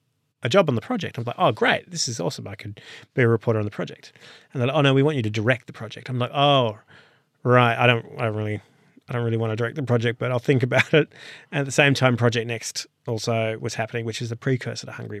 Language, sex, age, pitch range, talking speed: English, male, 30-49, 115-145 Hz, 275 wpm